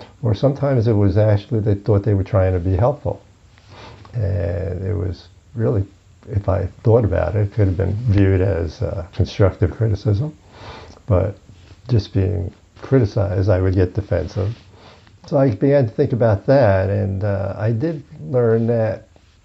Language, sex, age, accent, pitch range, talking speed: English, male, 60-79, American, 100-125 Hz, 160 wpm